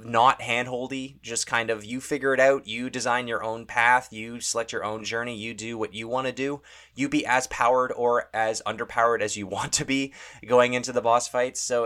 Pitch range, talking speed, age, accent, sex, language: 105-125 Hz, 225 wpm, 20-39, American, male, English